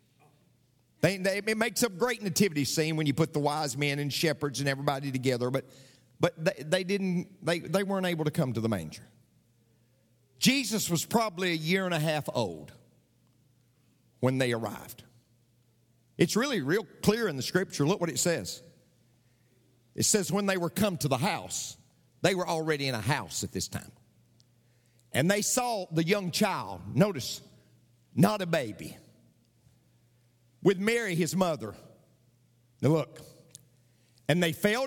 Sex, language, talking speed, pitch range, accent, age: male, English, 160 wpm, 125-175 Hz, American, 50-69